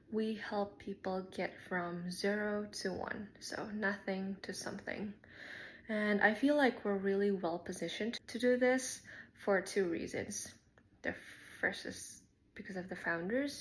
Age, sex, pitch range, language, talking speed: 20-39, female, 180-210 Hz, English, 145 wpm